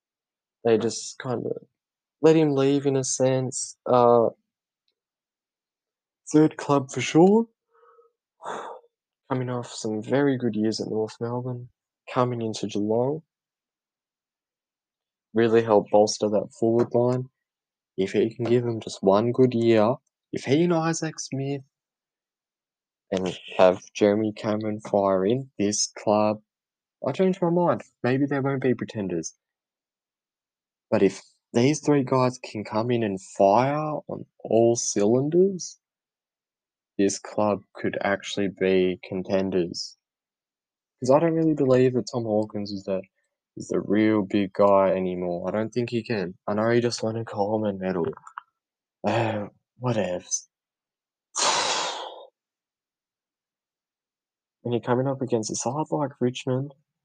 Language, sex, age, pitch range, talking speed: English, male, 20-39, 105-140 Hz, 130 wpm